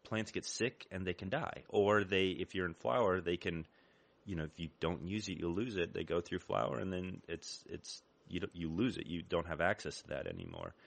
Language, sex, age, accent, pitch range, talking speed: English, male, 30-49, American, 85-110 Hz, 245 wpm